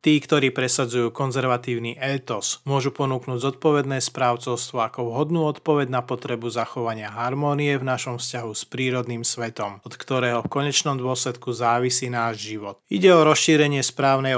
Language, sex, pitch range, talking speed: Slovak, male, 120-135 Hz, 140 wpm